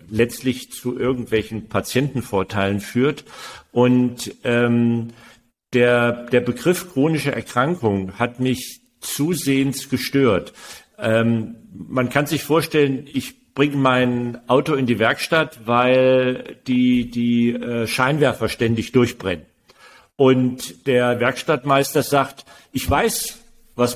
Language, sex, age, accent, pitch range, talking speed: German, male, 50-69, German, 120-150 Hz, 105 wpm